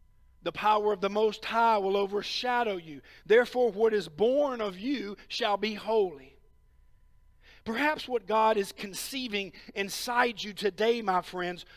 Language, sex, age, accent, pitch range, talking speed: English, male, 50-69, American, 205-250 Hz, 145 wpm